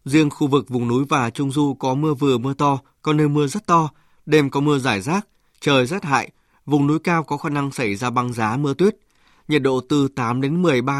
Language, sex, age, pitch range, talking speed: Vietnamese, male, 20-39, 130-155 Hz, 240 wpm